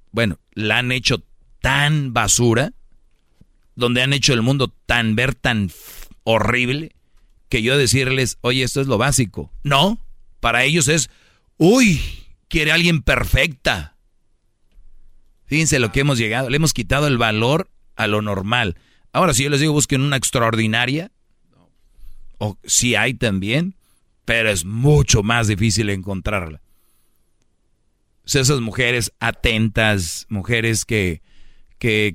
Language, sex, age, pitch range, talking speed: Spanish, male, 40-59, 105-130 Hz, 125 wpm